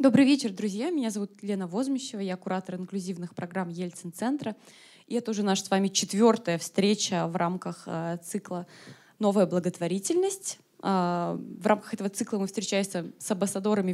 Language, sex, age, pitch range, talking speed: Russian, female, 20-39, 180-235 Hz, 140 wpm